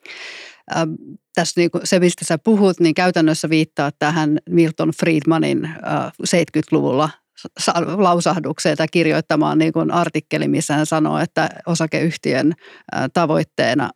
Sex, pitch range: female, 155-175 Hz